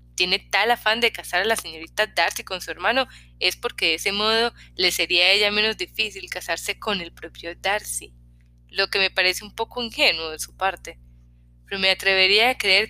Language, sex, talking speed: Spanish, female, 200 wpm